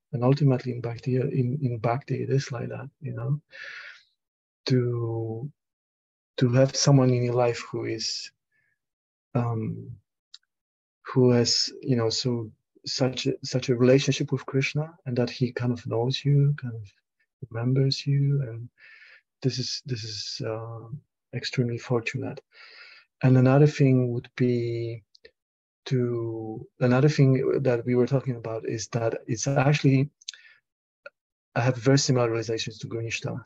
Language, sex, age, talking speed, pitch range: English, male, 30-49, 140 wpm, 115-135 Hz